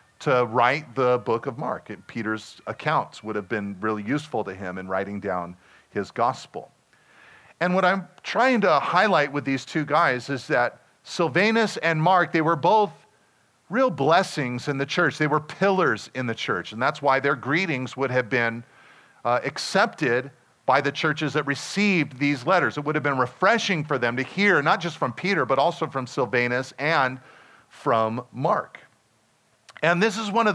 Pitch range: 125-175 Hz